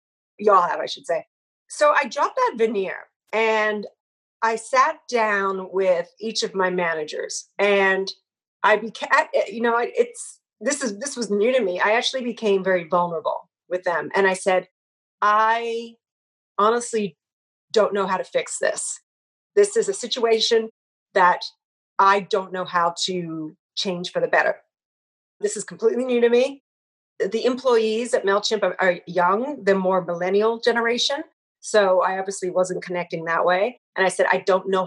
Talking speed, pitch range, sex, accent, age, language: 160 wpm, 185-235 Hz, female, American, 40-59, English